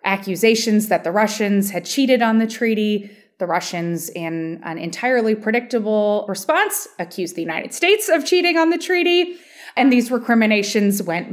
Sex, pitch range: female, 175-245 Hz